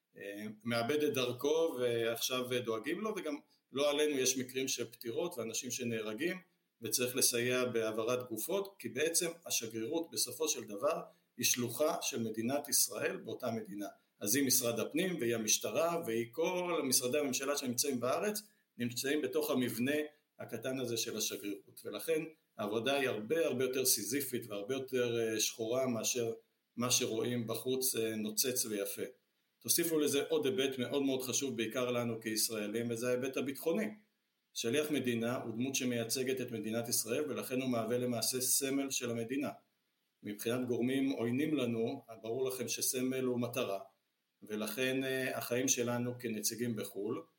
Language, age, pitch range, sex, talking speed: Hebrew, 60-79, 115-140 Hz, male, 140 wpm